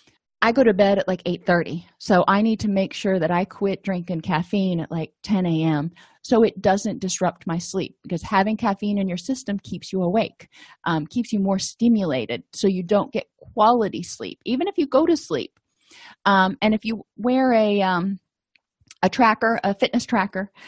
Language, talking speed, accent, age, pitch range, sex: English, 190 wpm, American, 30-49, 180-225 Hz, female